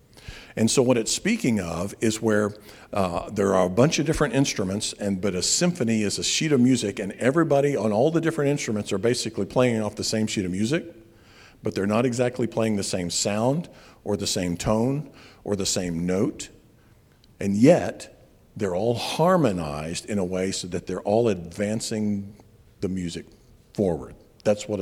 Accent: American